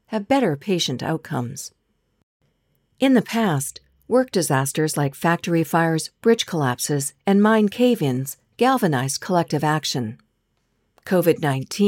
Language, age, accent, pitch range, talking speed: English, 50-69, American, 140-190 Hz, 105 wpm